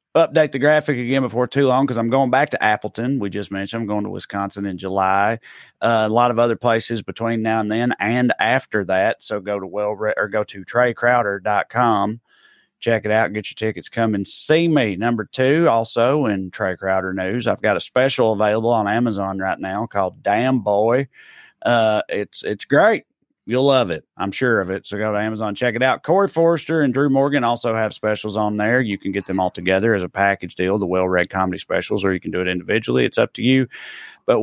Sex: male